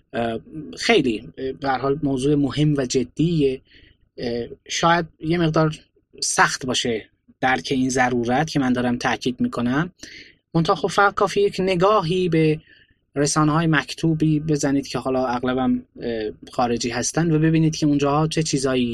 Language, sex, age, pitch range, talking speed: Persian, male, 20-39, 125-160 Hz, 130 wpm